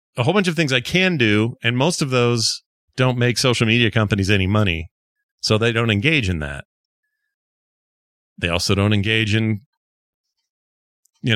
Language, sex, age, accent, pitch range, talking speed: English, male, 40-59, American, 90-120 Hz, 165 wpm